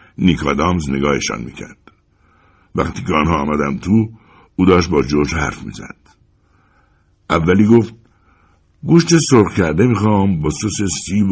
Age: 60-79